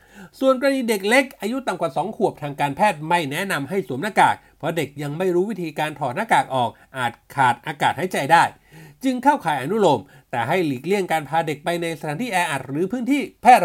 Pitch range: 160-215 Hz